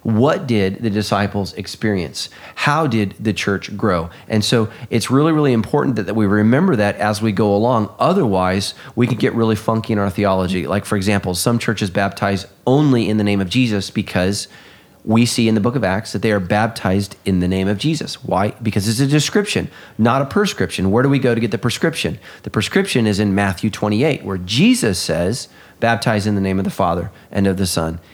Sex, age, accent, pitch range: male, 30-49, American, 100-120 Hz